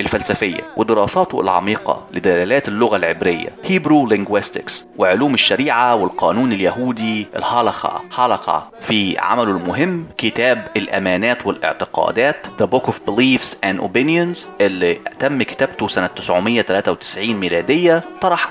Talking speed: 105 wpm